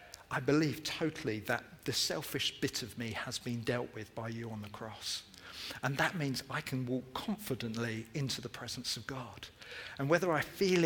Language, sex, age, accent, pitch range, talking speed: English, male, 40-59, British, 120-150 Hz, 190 wpm